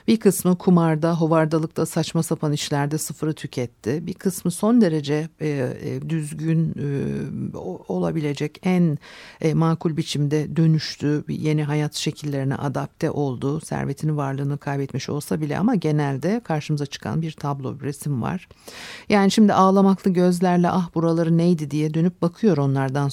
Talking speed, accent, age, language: 125 wpm, native, 50-69, Turkish